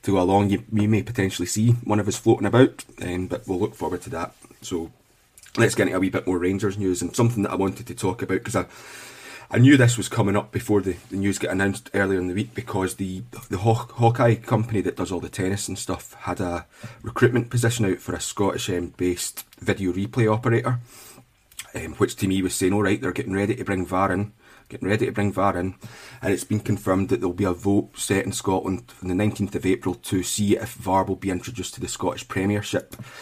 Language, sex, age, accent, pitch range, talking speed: English, male, 30-49, British, 95-115 Hz, 235 wpm